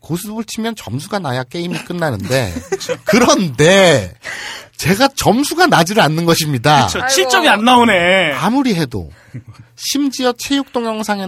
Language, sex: Korean, male